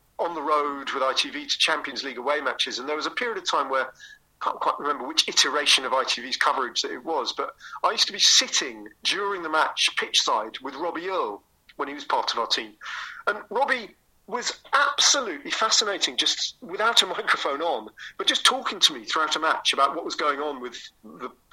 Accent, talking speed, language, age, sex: British, 210 wpm, English, 40-59, male